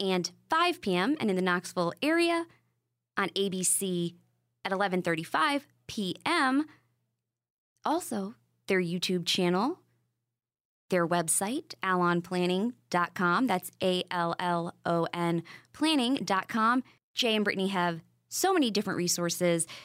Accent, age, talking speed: American, 20-39, 95 wpm